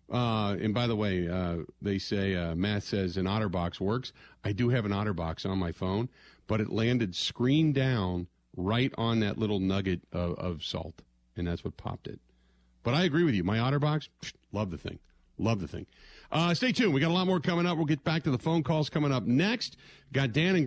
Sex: male